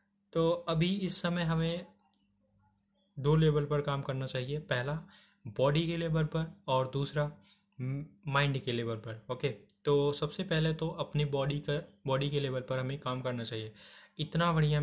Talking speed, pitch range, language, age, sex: 160 wpm, 135-165 Hz, Hindi, 20-39, male